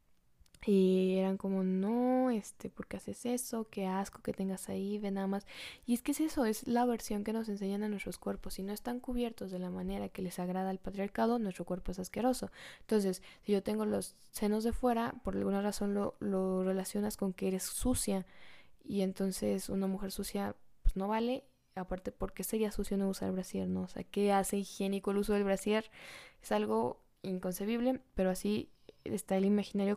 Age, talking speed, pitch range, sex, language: 10-29, 200 wpm, 185-220 Hz, female, Spanish